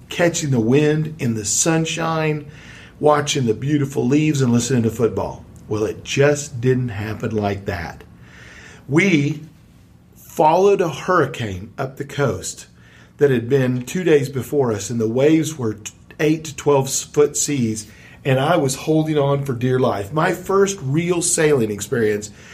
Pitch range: 115-155 Hz